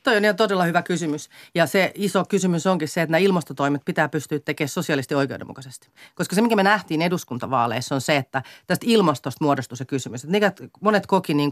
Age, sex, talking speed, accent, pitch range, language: 40-59, female, 195 wpm, native, 140-195 Hz, Finnish